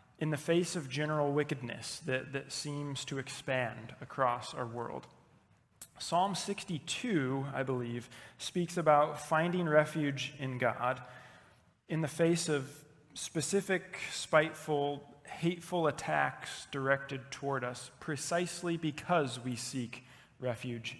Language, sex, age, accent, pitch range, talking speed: English, male, 30-49, American, 125-150 Hz, 115 wpm